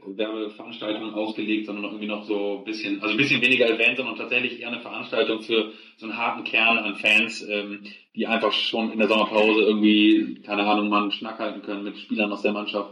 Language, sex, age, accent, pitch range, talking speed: German, male, 30-49, German, 110-130 Hz, 210 wpm